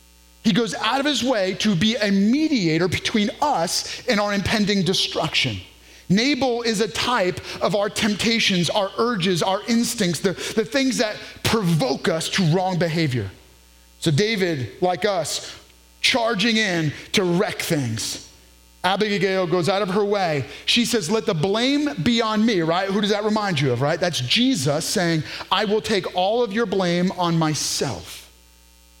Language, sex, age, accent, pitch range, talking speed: English, male, 30-49, American, 160-225 Hz, 165 wpm